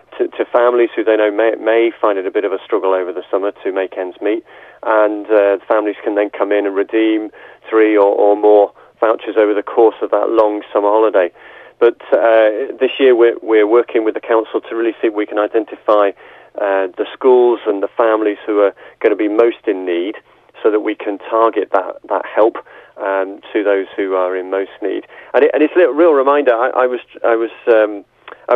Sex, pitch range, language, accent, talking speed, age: male, 105-125 Hz, English, British, 225 wpm, 40-59